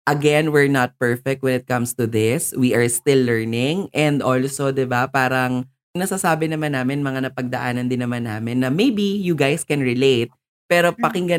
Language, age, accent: English, 20-39, Filipino